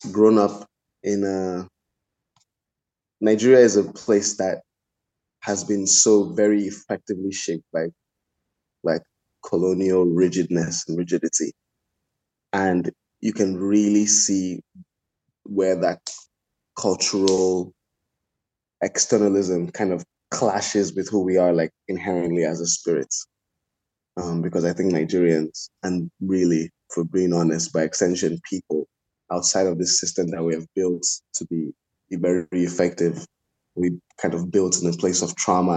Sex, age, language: male, 20-39, French